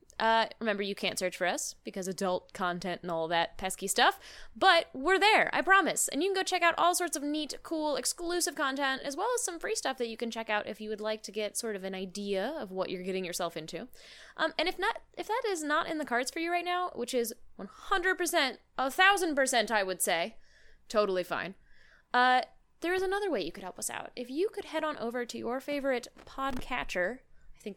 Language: English